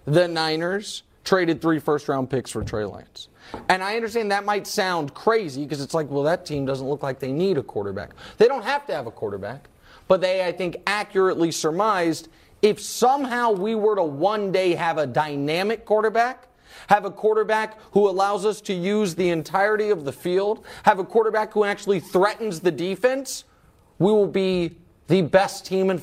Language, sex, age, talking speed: English, male, 30-49, 185 wpm